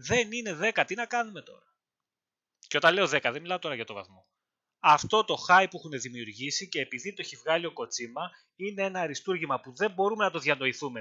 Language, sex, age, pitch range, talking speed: Greek, male, 20-39, 140-200 Hz, 215 wpm